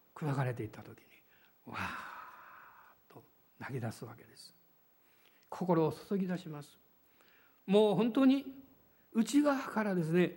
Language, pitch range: Japanese, 170-255 Hz